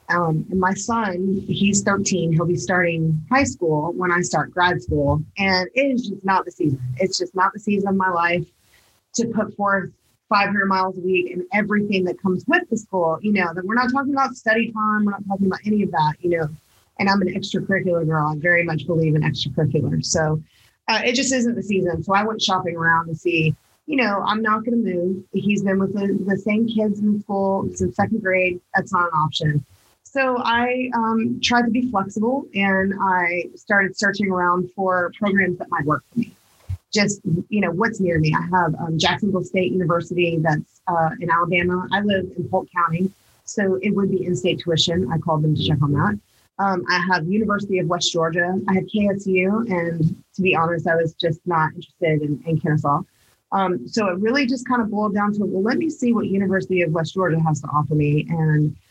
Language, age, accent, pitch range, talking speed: English, 30-49, American, 170-205 Hz, 215 wpm